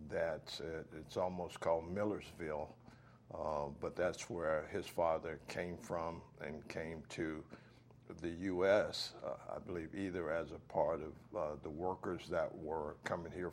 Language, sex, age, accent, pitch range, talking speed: English, male, 60-79, American, 80-100 Hz, 140 wpm